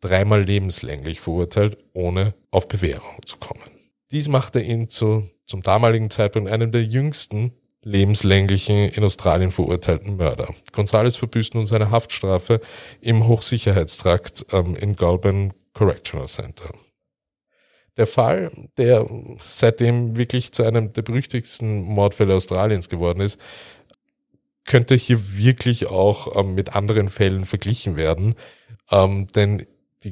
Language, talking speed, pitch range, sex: German, 120 wpm, 95-115 Hz, male